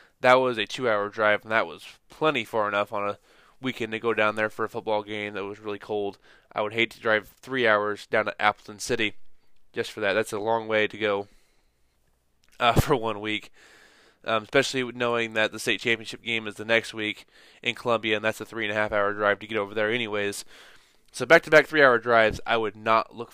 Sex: male